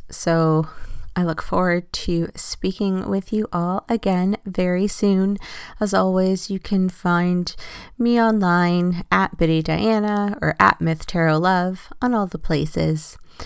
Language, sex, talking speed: English, female, 140 wpm